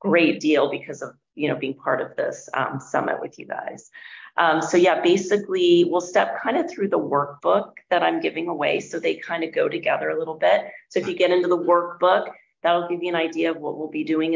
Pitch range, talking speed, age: 155-195 Hz, 235 wpm, 30-49